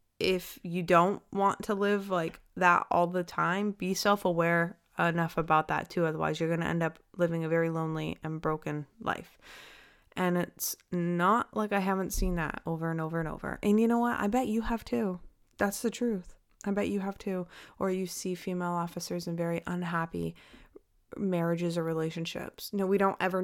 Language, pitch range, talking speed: English, 165-195 Hz, 190 wpm